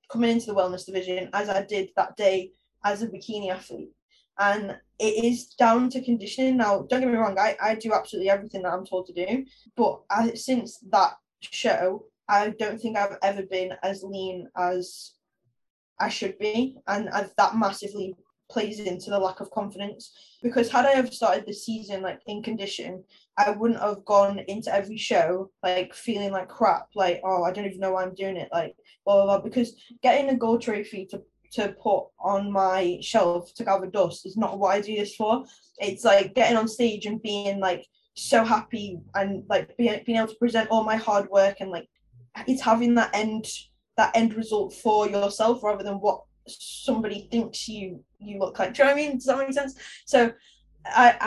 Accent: British